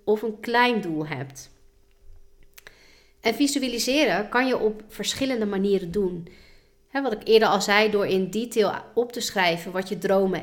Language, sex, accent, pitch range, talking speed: Dutch, female, Dutch, 185-230 Hz, 155 wpm